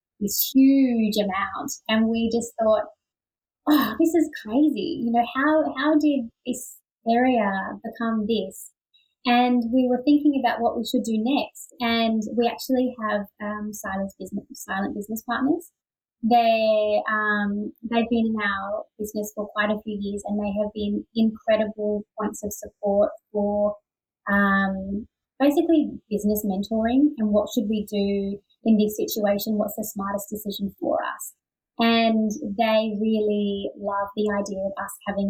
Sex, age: female, 20-39